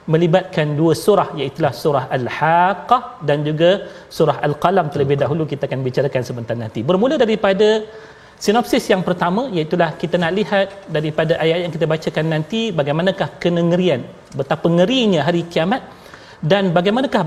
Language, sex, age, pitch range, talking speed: Malayalam, male, 40-59, 155-185 Hz, 140 wpm